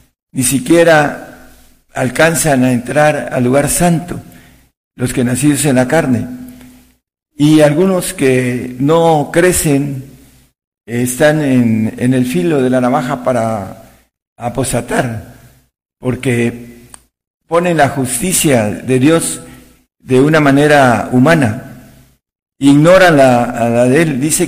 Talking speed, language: 115 wpm, Spanish